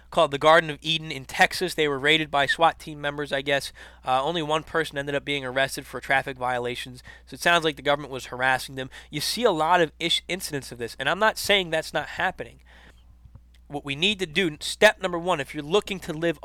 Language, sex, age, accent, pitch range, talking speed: English, male, 20-39, American, 140-190 Hz, 235 wpm